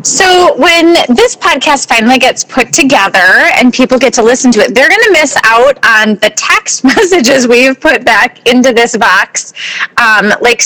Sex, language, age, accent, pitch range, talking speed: female, English, 30-49, American, 210-290 Hz, 180 wpm